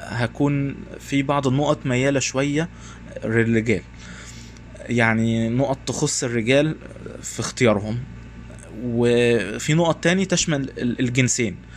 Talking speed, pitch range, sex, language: 85 wpm, 115-145 Hz, male, English